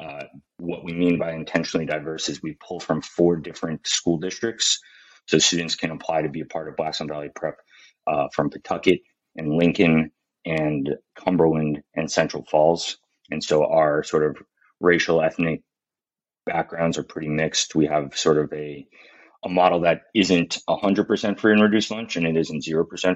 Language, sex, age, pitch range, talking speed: English, male, 30-49, 80-90 Hz, 170 wpm